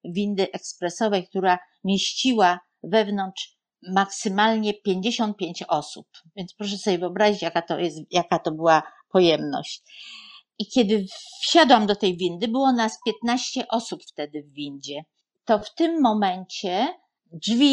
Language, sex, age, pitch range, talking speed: Polish, female, 50-69, 195-240 Hz, 125 wpm